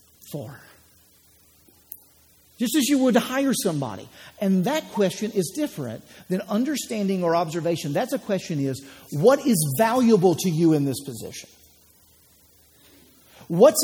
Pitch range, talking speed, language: 135-205 Hz, 125 wpm, English